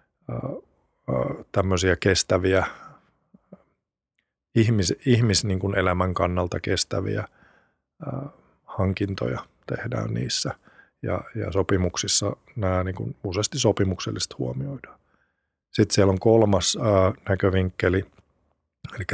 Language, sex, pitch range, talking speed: Finnish, male, 90-100 Hz, 65 wpm